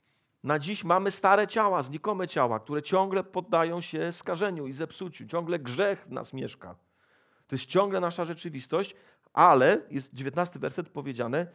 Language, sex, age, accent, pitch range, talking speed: Polish, male, 40-59, native, 140-180 Hz, 150 wpm